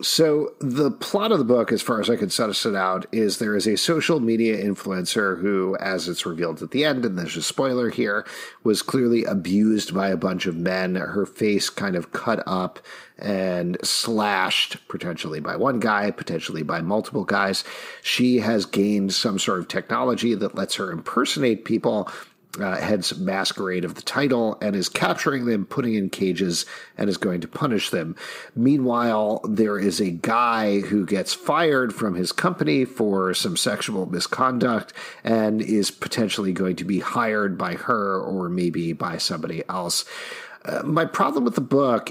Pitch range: 95-125 Hz